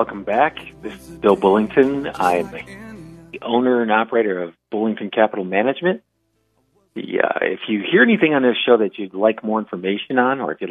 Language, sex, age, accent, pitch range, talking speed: English, male, 50-69, American, 95-115 Hz, 180 wpm